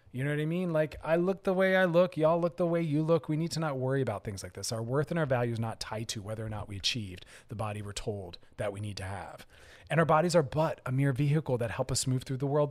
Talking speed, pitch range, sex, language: 305 wpm, 125-155 Hz, male, English